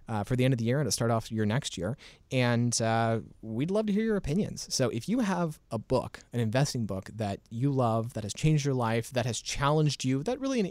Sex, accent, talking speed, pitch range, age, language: male, American, 260 wpm, 110-145 Hz, 30-49, English